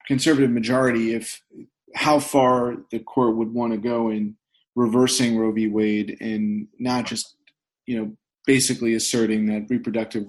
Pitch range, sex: 115-135 Hz, male